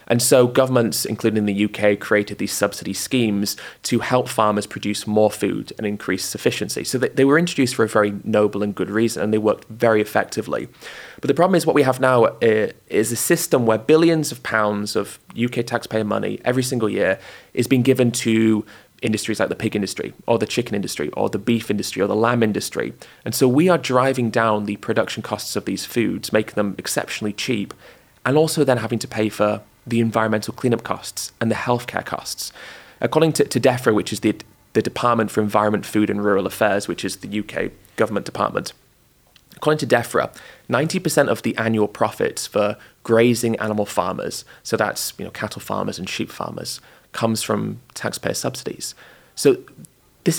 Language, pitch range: English, 105-130 Hz